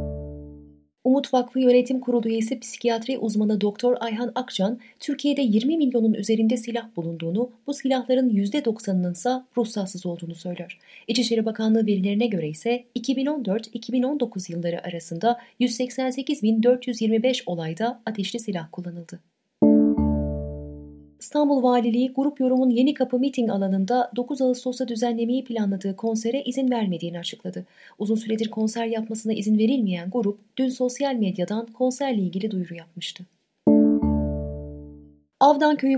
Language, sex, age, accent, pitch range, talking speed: Turkish, female, 30-49, native, 185-250 Hz, 110 wpm